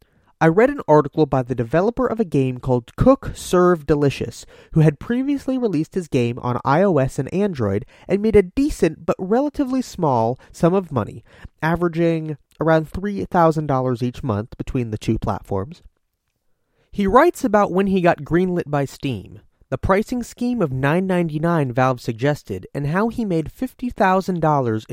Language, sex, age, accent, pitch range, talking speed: English, male, 30-49, American, 130-195 Hz, 155 wpm